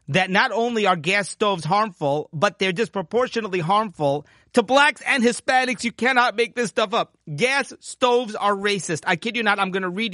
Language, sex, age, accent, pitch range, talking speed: English, male, 30-49, American, 155-195 Hz, 195 wpm